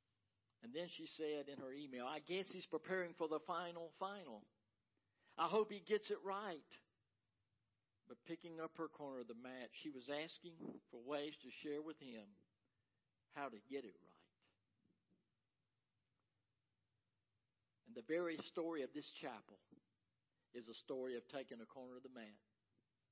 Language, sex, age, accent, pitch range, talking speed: English, male, 60-79, American, 110-155 Hz, 155 wpm